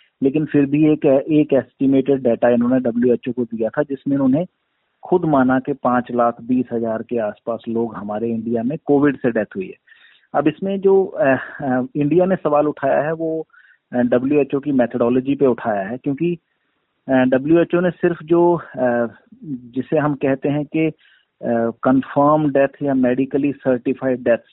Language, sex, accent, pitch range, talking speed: Hindi, male, native, 120-150 Hz, 175 wpm